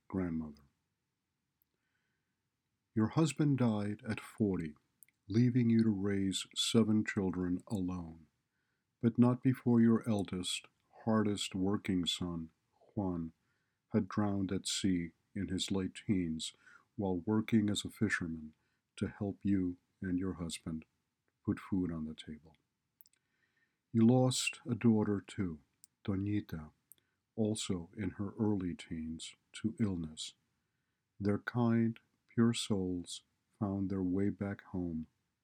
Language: English